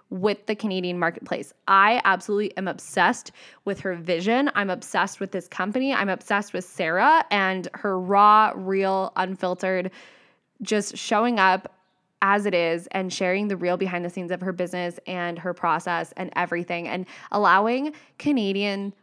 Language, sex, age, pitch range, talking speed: English, female, 10-29, 180-210 Hz, 155 wpm